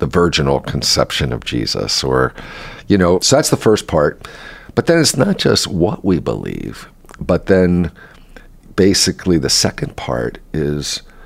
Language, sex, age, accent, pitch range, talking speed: English, male, 50-69, American, 70-80 Hz, 150 wpm